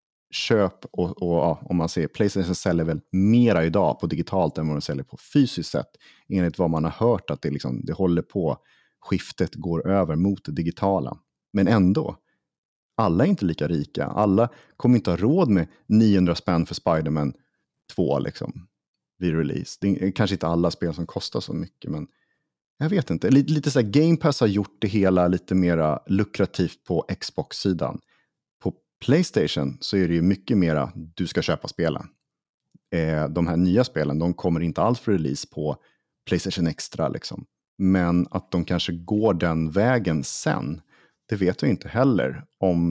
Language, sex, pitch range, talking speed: Swedish, male, 85-100 Hz, 175 wpm